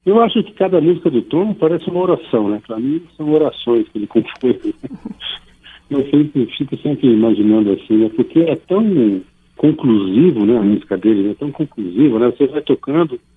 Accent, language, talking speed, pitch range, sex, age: Brazilian, Portuguese, 195 wpm, 115-150 Hz, male, 60-79